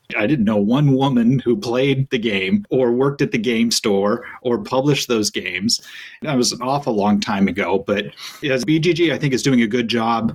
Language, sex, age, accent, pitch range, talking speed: English, male, 40-59, American, 115-145 Hz, 210 wpm